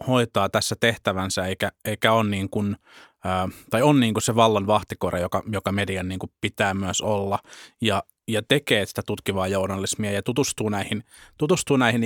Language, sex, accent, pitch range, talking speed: Finnish, male, native, 100-120 Hz, 170 wpm